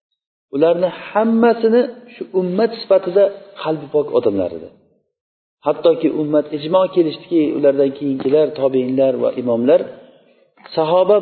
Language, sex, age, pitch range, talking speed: Bulgarian, male, 50-69, 135-190 Hz, 105 wpm